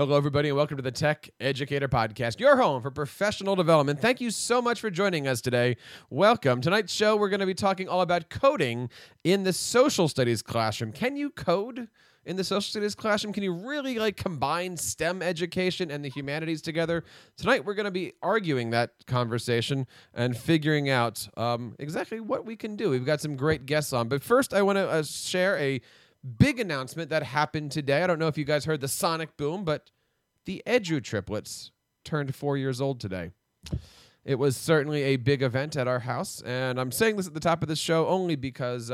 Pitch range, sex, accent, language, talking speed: 125-175 Hz, male, American, English, 205 wpm